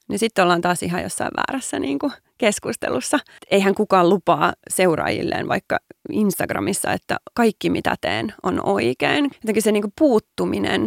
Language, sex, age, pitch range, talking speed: Finnish, female, 20-39, 185-290 Hz, 125 wpm